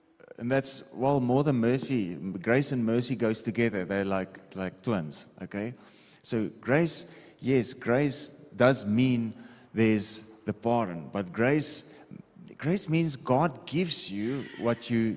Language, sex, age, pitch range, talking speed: English, male, 30-49, 110-140 Hz, 135 wpm